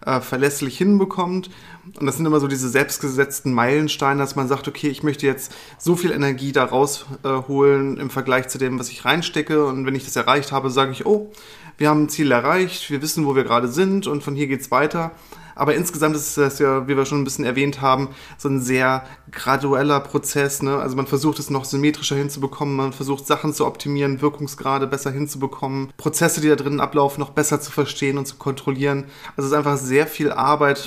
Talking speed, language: 210 wpm, German